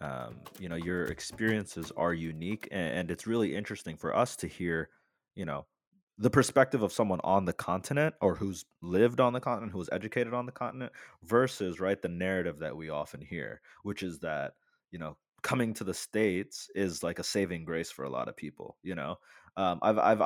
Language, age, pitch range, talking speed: English, 20-39, 90-105 Hz, 200 wpm